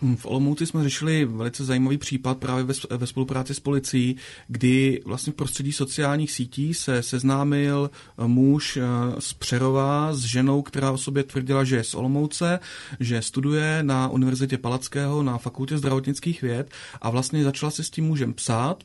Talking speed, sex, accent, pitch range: 160 wpm, male, native, 130-150 Hz